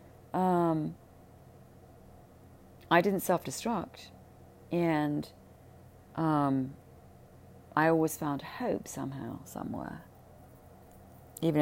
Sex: female